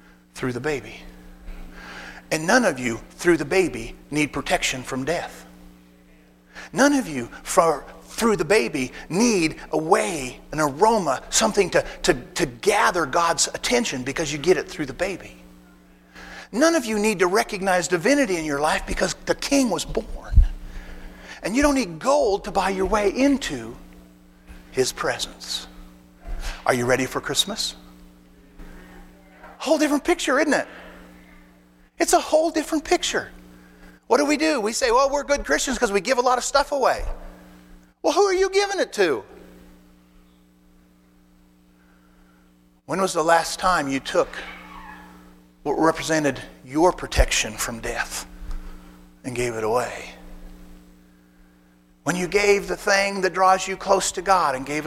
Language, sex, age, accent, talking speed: English, male, 50-69, American, 150 wpm